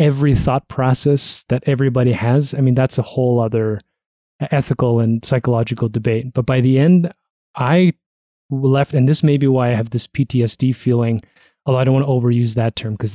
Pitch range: 120-145 Hz